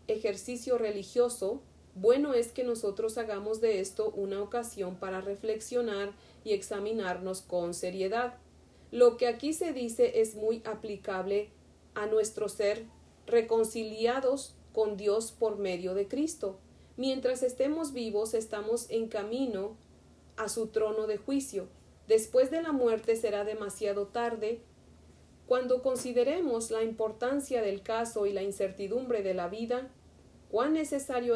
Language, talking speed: Spanish, 130 wpm